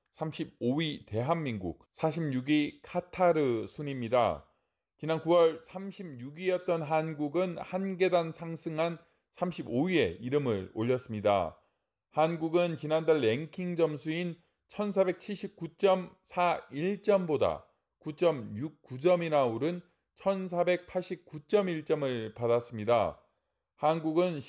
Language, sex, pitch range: Korean, male, 135-175 Hz